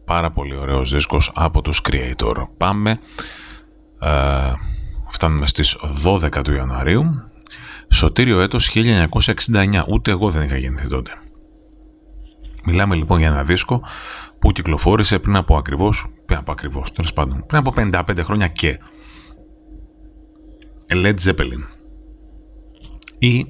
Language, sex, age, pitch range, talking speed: Greek, male, 30-49, 75-110 Hz, 115 wpm